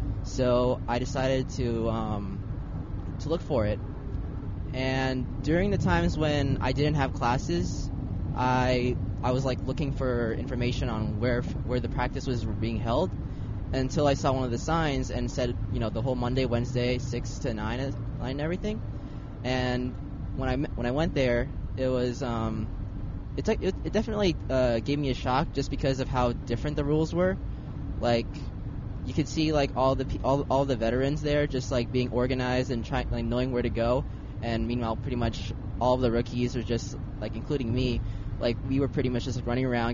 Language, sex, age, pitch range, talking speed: English, male, 20-39, 110-130 Hz, 190 wpm